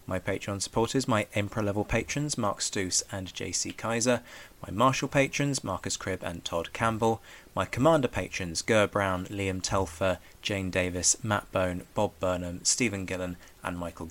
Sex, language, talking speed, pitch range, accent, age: male, English, 155 wpm, 90-120 Hz, British, 20-39